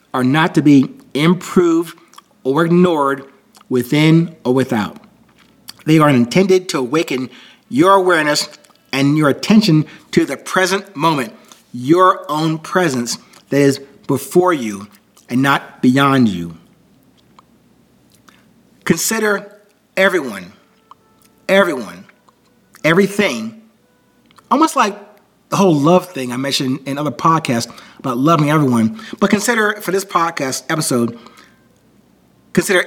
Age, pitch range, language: 40-59, 135-195 Hz, English